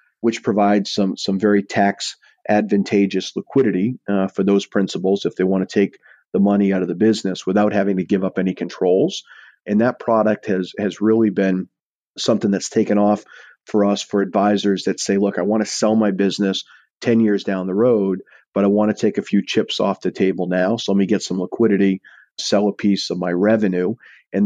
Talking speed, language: 205 wpm, English